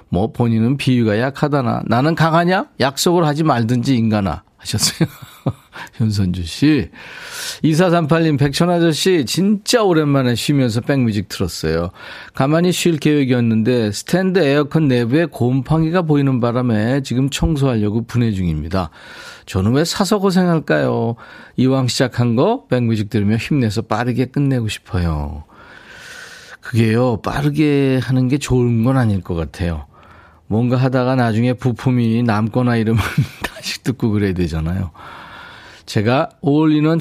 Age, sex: 40-59, male